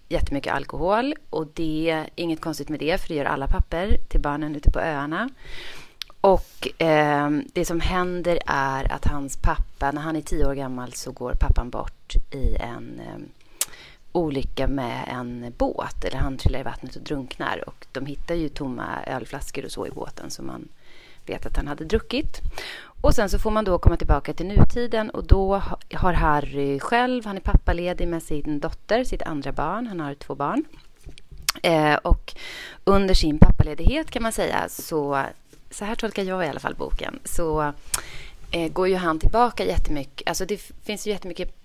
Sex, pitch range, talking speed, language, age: female, 145-185 Hz, 185 wpm, English, 30-49